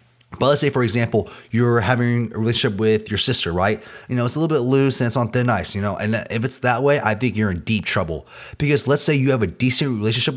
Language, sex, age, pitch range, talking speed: English, male, 30-49, 105-125 Hz, 265 wpm